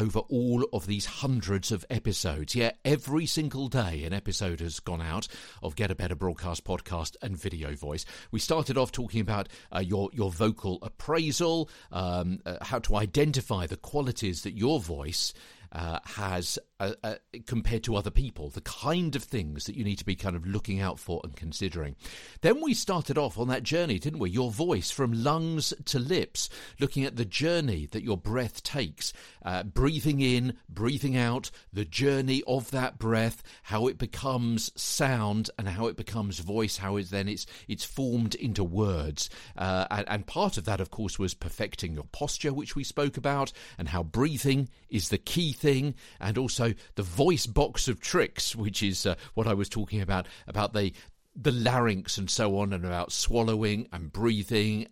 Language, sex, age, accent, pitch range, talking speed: English, male, 50-69, British, 95-130 Hz, 185 wpm